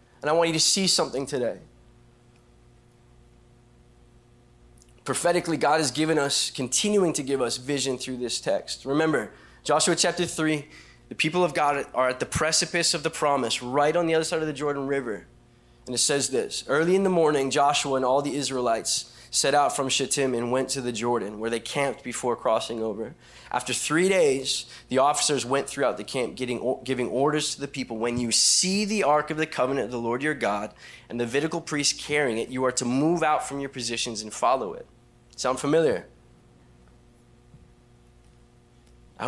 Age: 20-39